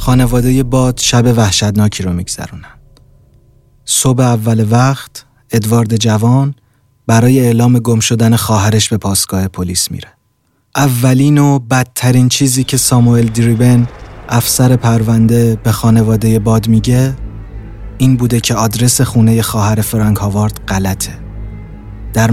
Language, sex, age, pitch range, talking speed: Persian, male, 30-49, 105-125 Hz, 115 wpm